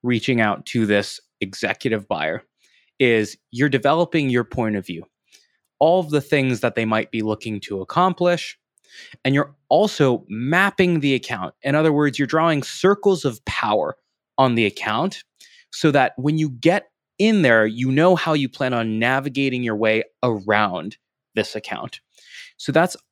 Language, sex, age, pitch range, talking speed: English, male, 20-39, 115-160 Hz, 160 wpm